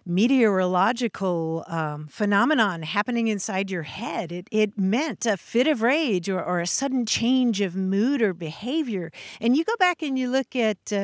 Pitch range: 190-235 Hz